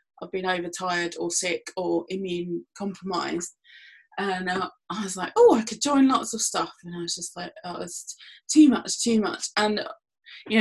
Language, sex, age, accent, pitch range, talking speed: English, female, 20-39, British, 180-220 Hz, 185 wpm